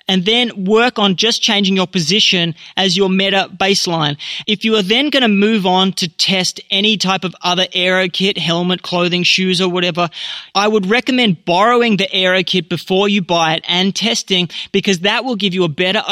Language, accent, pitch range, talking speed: English, Australian, 180-210 Hz, 195 wpm